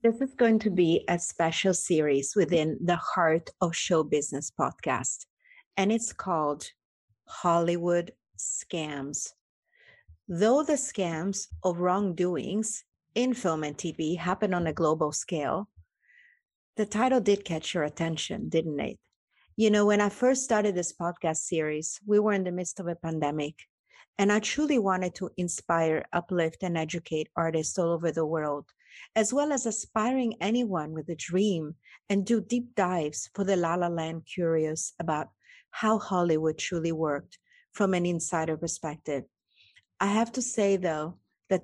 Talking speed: 155 wpm